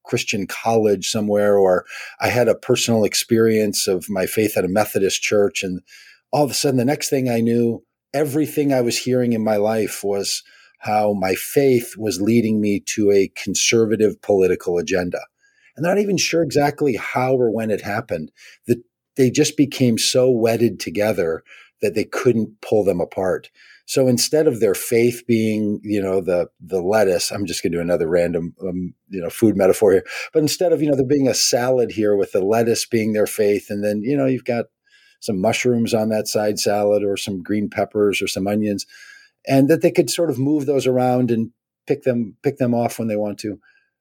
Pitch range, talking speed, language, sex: 105-145 Hz, 200 wpm, English, male